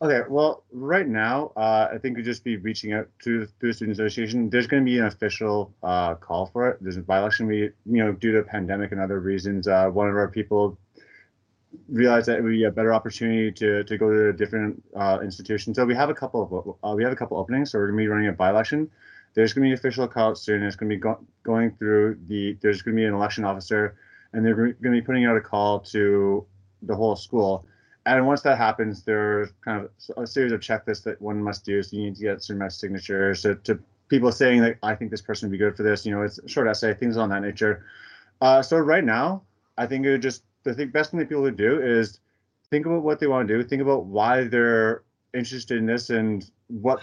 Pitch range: 105-130 Hz